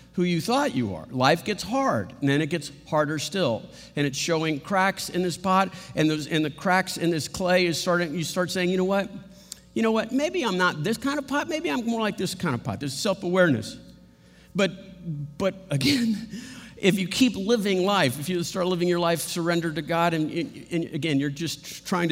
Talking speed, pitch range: 220 wpm, 145-190 Hz